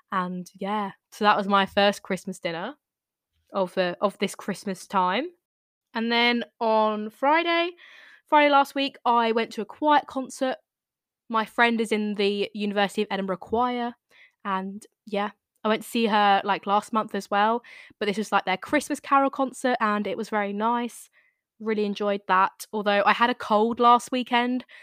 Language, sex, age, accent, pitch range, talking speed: English, female, 10-29, British, 195-230 Hz, 175 wpm